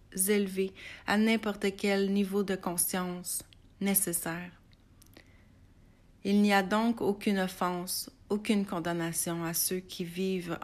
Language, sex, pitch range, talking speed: French, female, 170-200 Hz, 115 wpm